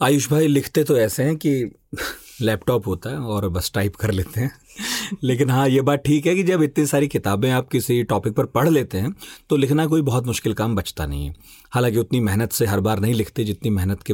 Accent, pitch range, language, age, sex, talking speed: native, 100-140 Hz, Hindi, 40-59, male, 230 wpm